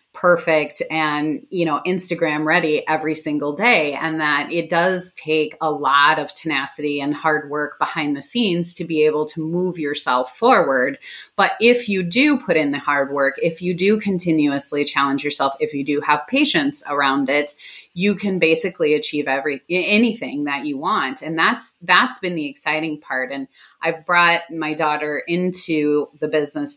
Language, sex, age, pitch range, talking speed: English, female, 30-49, 150-190 Hz, 175 wpm